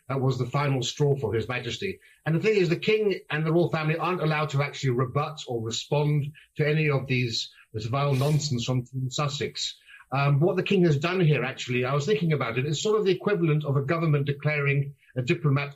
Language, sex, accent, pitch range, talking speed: English, male, British, 135-170 Hz, 225 wpm